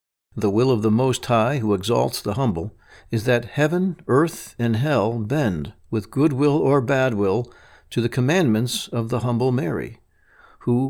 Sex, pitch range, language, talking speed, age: male, 110-140 Hz, English, 170 wpm, 60-79